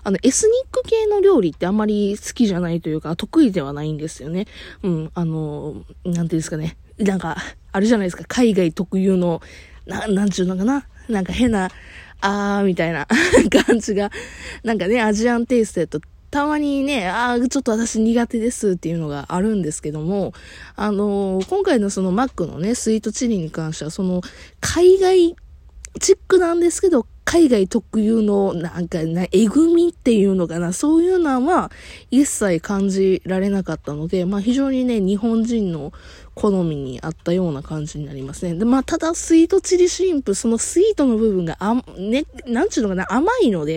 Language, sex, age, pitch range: Japanese, female, 20-39, 170-250 Hz